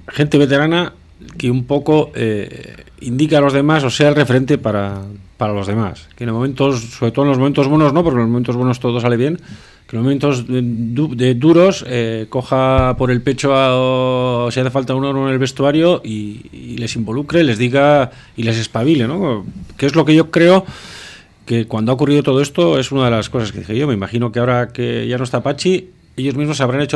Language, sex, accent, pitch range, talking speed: Spanish, male, Spanish, 115-145 Hz, 225 wpm